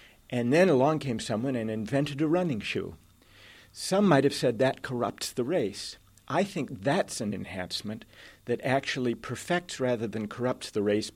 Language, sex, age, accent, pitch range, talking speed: English, male, 50-69, American, 110-145 Hz, 165 wpm